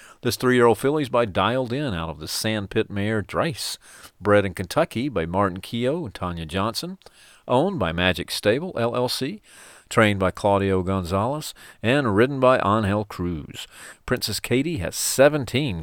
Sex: male